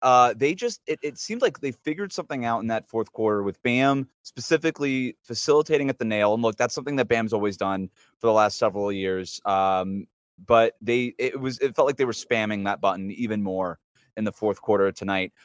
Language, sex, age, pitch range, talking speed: English, male, 20-39, 110-145 Hz, 215 wpm